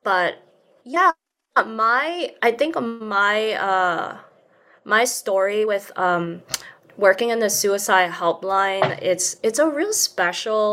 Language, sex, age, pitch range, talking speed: English, female, 20-39, 185-230 Hz, 115 wpm